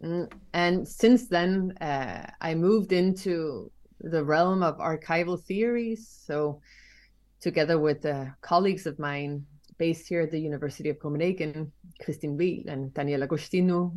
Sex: female